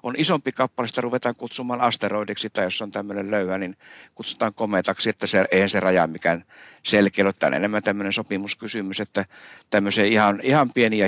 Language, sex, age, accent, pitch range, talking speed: Finnish, male, 60-79, native, 95-115 Hz, 175 wpm